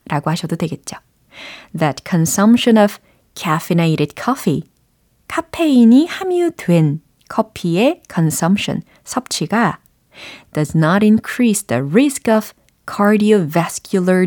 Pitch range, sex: 170-245 Hz, female